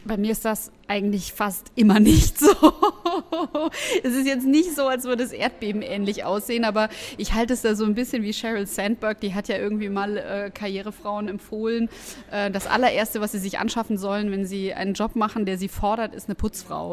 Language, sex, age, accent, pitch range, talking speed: German, female, 20-39, German, 205-240 Hz, 200 wpm